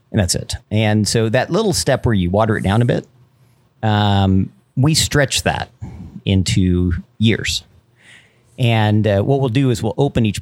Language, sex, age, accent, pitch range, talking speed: English, male, 40-59, American, 95-120 Hz, 165 wpm